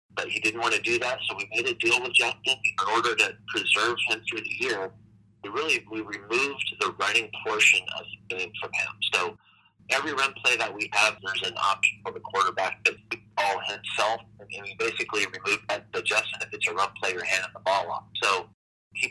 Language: English